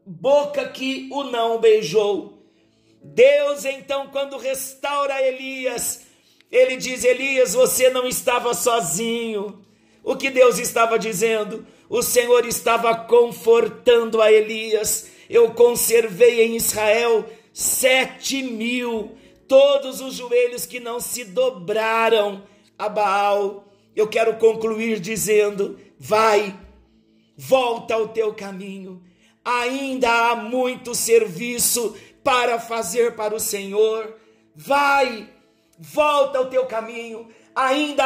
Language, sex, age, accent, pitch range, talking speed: Portuguese, male, 50-69, Brazilian, 225-290 Hz, 105 wpm